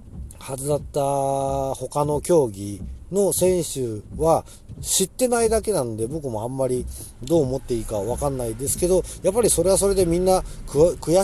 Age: 40-59